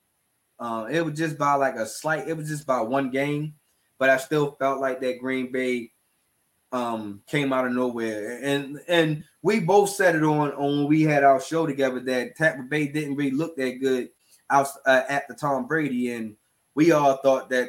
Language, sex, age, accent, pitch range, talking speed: English, male, 20-39, American, 130-165 Hz, 205 wpm